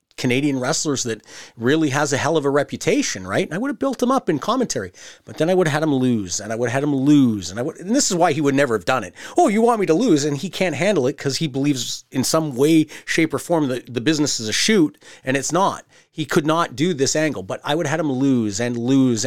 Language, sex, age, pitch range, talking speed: English, male, 30-49, 120-170 Hz, 285 wpm